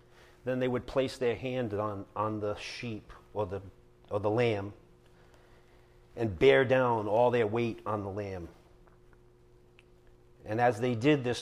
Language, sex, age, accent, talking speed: English, male, 40-59, American, 150 wpm